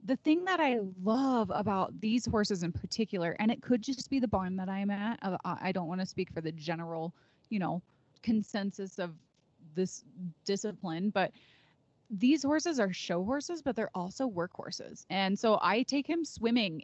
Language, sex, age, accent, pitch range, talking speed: English, female, 20-39, American, 170-210 Hz, 180 wpm